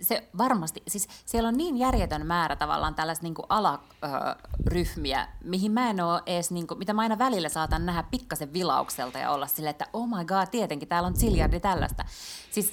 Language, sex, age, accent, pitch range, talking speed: Finnish, female, 30-49, native, 150-205 Hz, 175 wpm